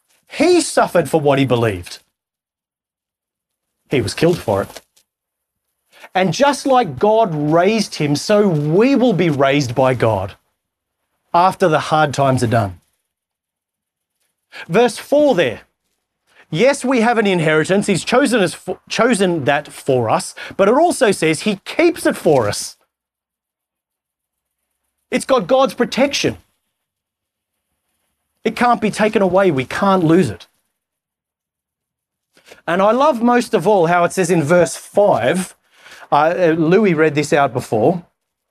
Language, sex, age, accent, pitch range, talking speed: English, male, 30-49, Australian, 140-225 Hz, 135 wpm